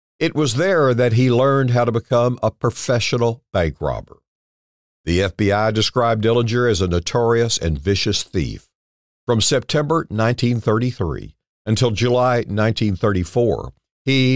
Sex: male